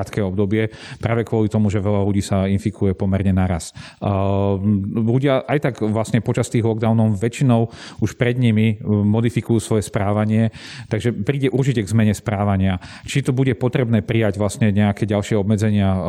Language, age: Slovak, 40-59